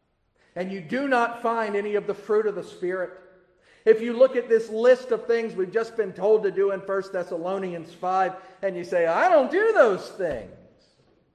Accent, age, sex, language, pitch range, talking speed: American, 40-59, male, English, 175-235 Hz, 200 wpm